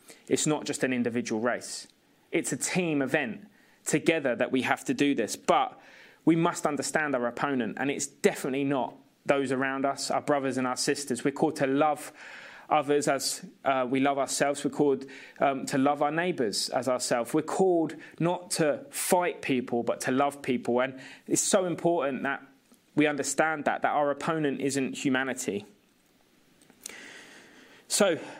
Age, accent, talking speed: 20-39, British, 165 wpm